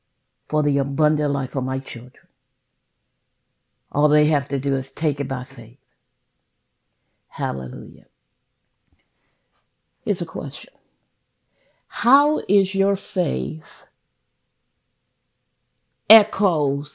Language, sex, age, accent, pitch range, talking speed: English, female, 60-79, American, 145-230 Hz, 90 wpm